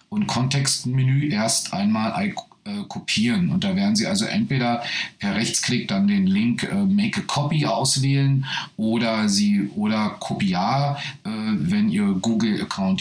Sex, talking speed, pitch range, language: male, 140 wpm, 140-205 Hz, German